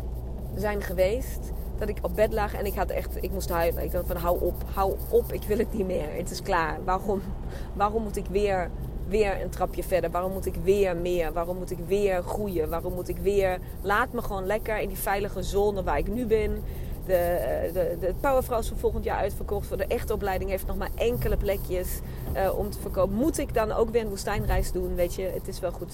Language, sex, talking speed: Dutch, female, 230 wpm